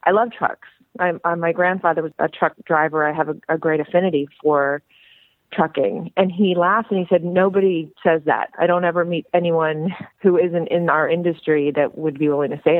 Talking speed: 200 wpm